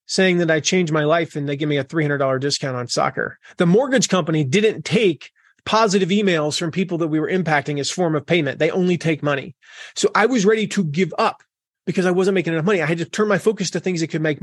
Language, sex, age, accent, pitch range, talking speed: English, male, 30-49, American, 155-190 Hz, 250 wpm